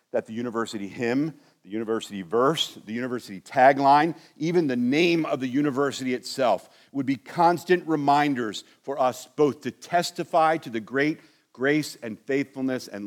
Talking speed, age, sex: 145 wpm, 50-69, male